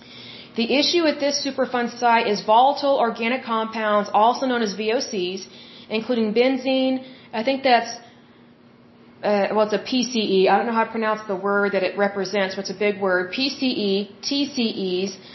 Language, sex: German, female